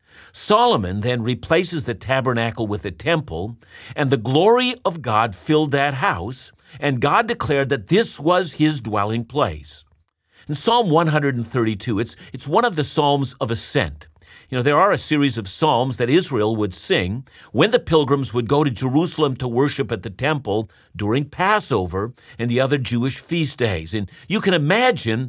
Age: 50-69